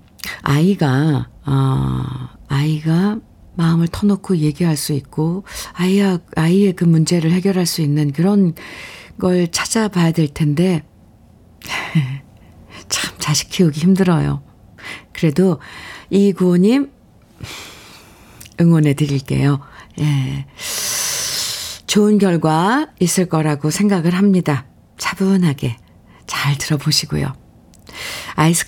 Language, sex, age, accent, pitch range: Korean, female, 50-69, native, 150-195 Hz